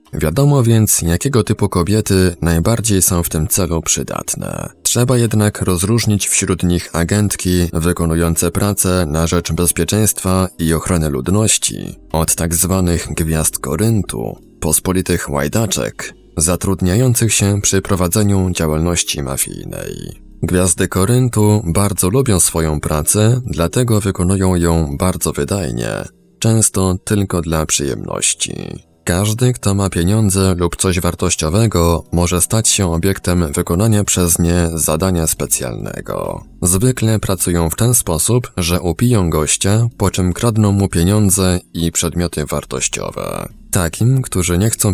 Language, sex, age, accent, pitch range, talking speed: Polish, male, 20-39, native, 85-105 Hz, 120 wpm